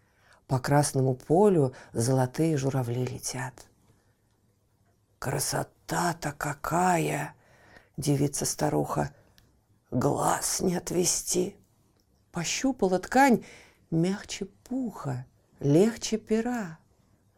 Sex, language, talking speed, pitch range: female, Russian, 60 wpm, 120-180 Hz